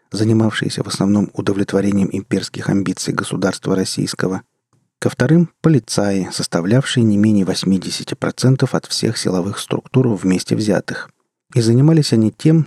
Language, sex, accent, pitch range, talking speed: Russian, male, native, 95-135 Hz, 125 wpm